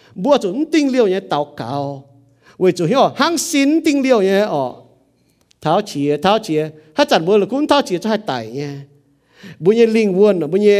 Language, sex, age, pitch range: English, male, 50-69, 160-245 Hz